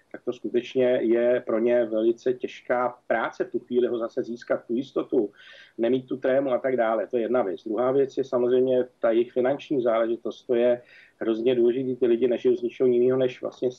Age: 40-59